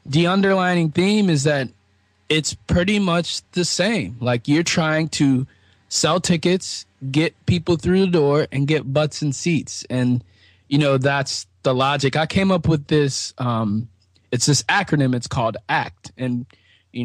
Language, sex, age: English, male, 20-39